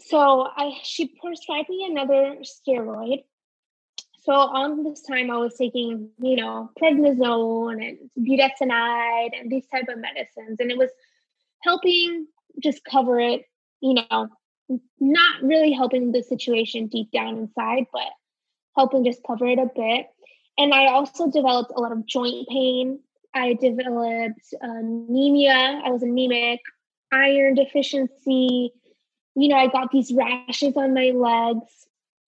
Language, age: English, 10-29